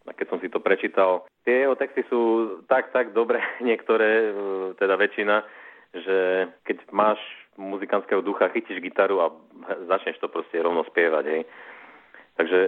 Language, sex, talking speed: Slovak, male, 145 wpm